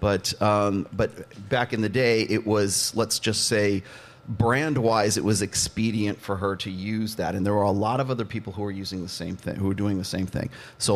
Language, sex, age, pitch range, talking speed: English, male, 30-49, 100-120 Hz, 230 wpm